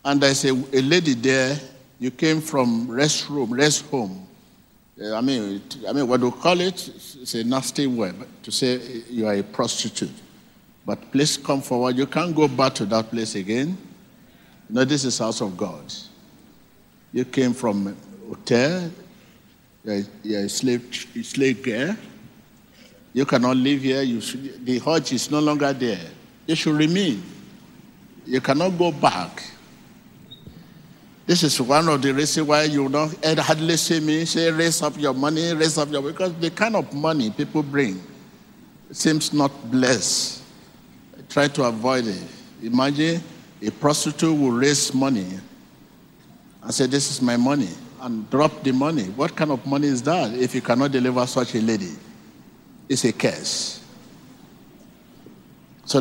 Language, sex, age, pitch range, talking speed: English, male, 50-69, 125-155 Hz, 155 wpm